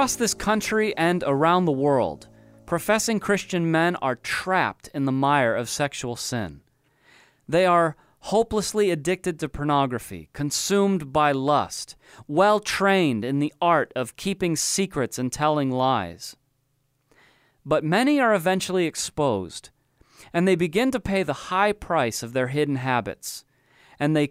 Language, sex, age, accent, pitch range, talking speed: English, male, 30-49, American, 130-180 Hz, 140 wpm